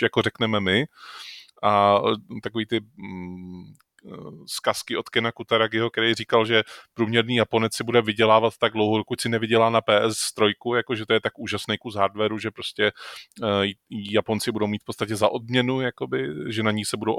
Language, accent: Czech, native